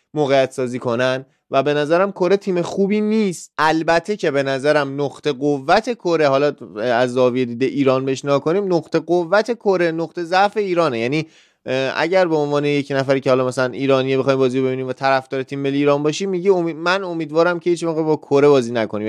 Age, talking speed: 20-39, 180 wpm